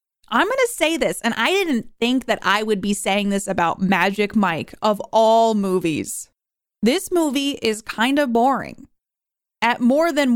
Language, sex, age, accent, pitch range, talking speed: English, female, 20-39, American, 205-265 Hz, 175 wpm